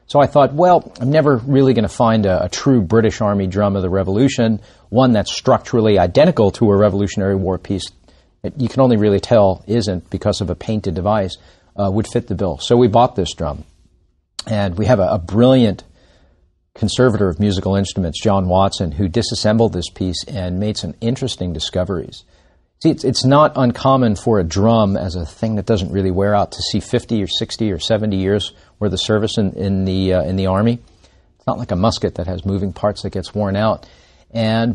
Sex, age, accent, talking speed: male, 40-59, American, 205 wpm